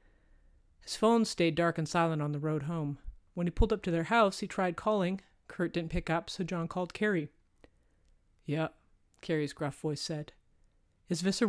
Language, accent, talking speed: English, American, 185 wpm